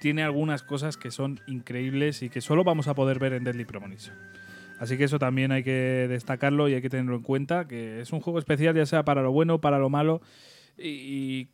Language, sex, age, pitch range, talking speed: Spanish, male, 20-39, 125-150 Hz, 225 wpm